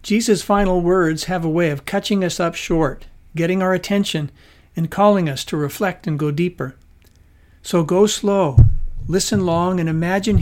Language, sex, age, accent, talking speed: English, male, 60-79, American, 165 wpm